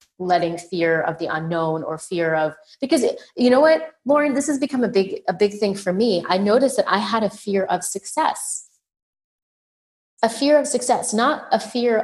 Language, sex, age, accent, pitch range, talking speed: English, female, 30-49, American, 170-215 Hz, 195 wpm